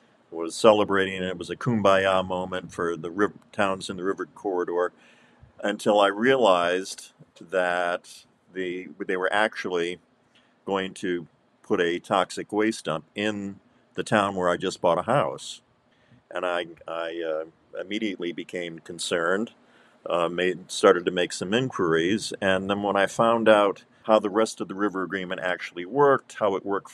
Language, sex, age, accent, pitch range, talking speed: English, male, 50-69, American, 90-105 Hz, 160 wpm